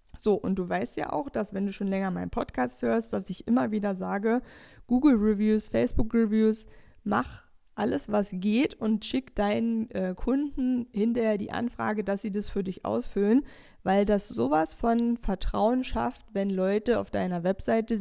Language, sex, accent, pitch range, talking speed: German, female, German, 190-230 Hz, 175 wpm